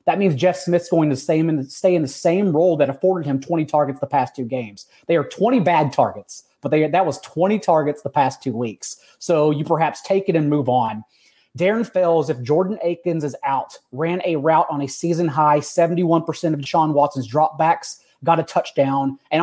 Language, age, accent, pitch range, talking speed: English, 30-49, American, 150-190 Hz, 205 wpm